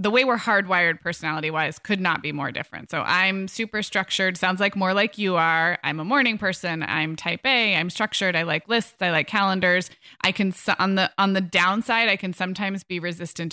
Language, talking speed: English, 215 wpm